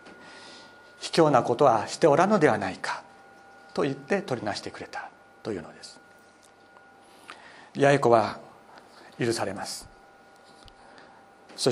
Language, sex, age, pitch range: Japanese, male, 60-79, 125-150 Hz